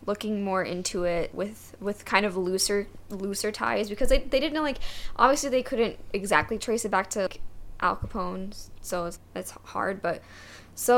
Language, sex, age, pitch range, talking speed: English, female, 10-29, 180-225 Hz, 185 wpm